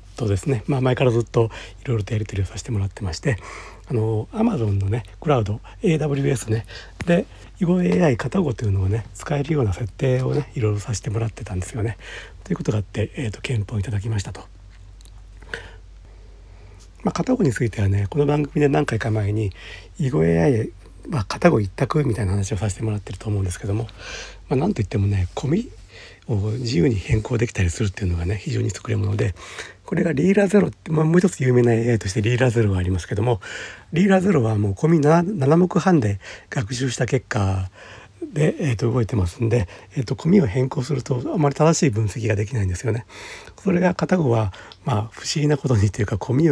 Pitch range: 100-140 Hz